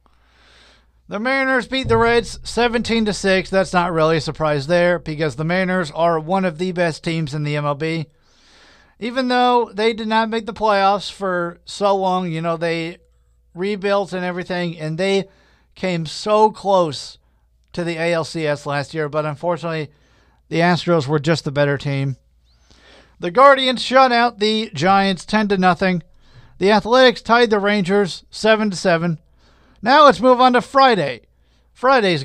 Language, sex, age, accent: English, male, 50-69, American